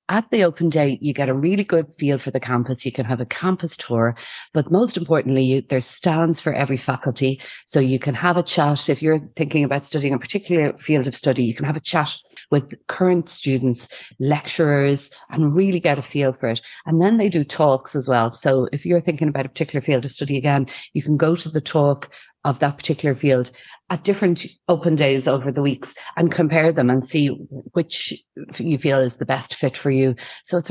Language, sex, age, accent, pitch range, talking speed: English, female, 30-49, Irish, 130-165 Hz, 215 wpm